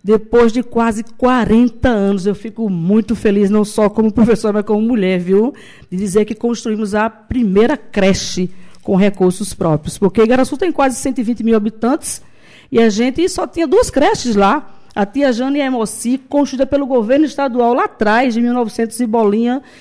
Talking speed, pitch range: 175 wpm, 200-240 Hz